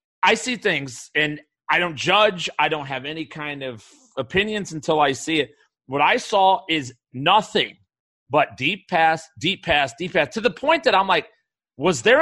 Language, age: English, 40-59